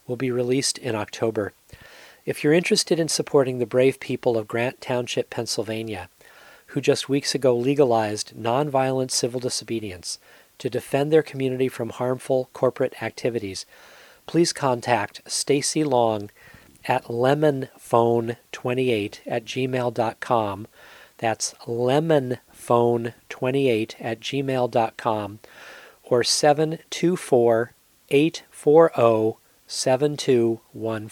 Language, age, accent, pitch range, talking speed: English, 40-59, American, 115-140 Hz, 95 wpm